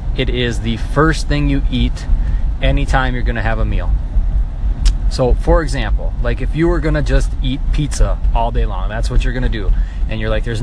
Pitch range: 110-150 Hz